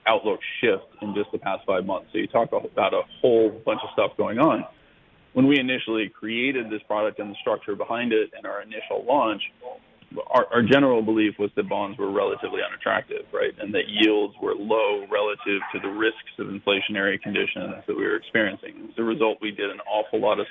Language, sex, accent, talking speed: English, male, American, 205 wpm